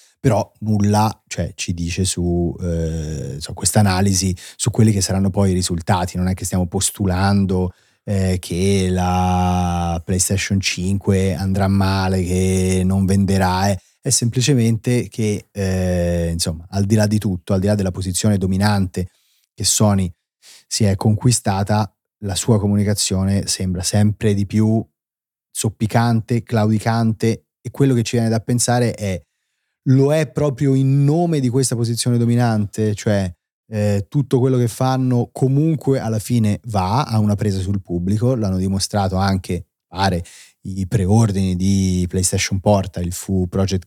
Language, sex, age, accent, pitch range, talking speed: Italian, male, 30-49, native, 95-110 Hz, 145 wpm